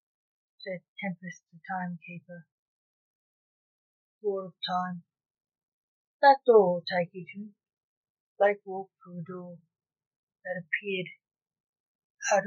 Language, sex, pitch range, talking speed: English, female, 175-220 Hz, 105 wpm